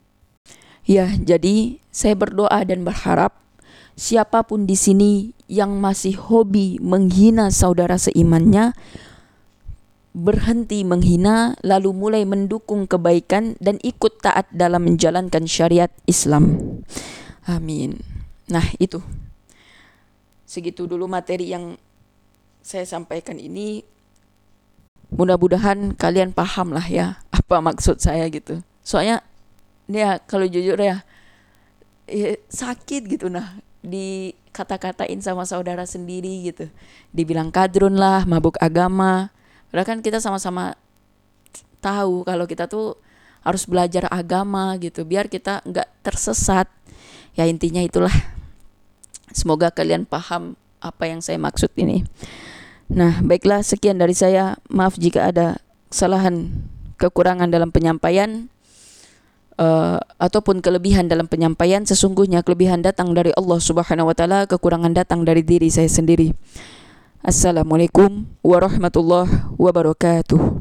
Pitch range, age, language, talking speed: 165-195 Hz, 20-39, Indonesian, 105 wpm